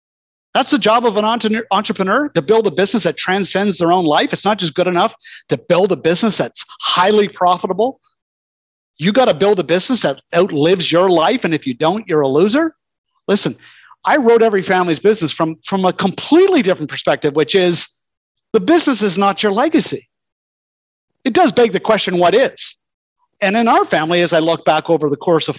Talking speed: 195 wpm